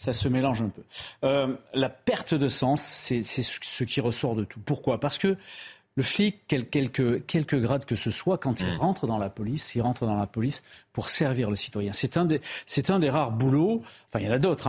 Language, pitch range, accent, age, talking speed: French, 115-155 Hz, French, 40-59, 230 wpm